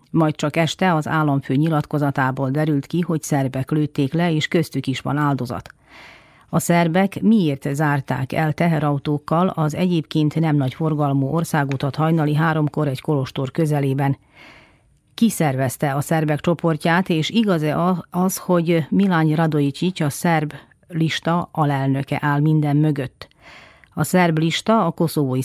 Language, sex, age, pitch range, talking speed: Hungarian, female, 40-59, 140-170 Hz, 130 wpm